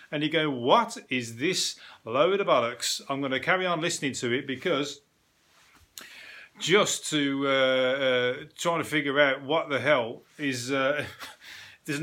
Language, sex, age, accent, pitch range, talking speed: English, male, 30-49, British, 140-175 Hz, 160 wpm